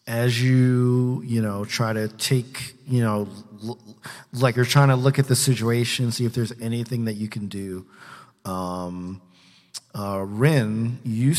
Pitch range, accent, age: 105-125 Hz, American, 40-59